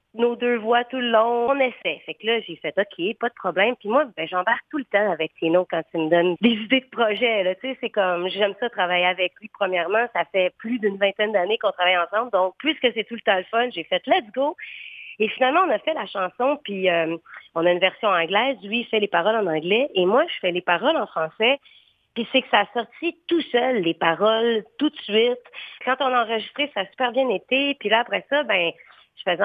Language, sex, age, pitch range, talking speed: French, female, 30-49, 185-260 Hz, 255 wpm